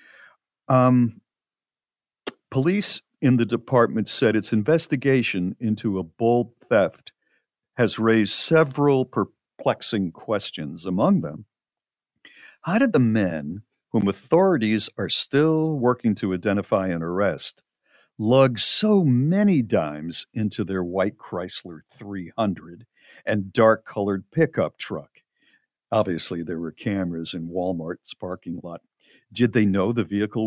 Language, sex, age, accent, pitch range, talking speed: English, male, 50-69, American, 100-135 Hz, 115 wpm